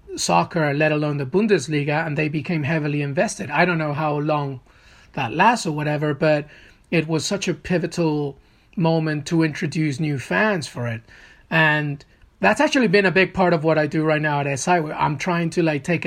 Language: English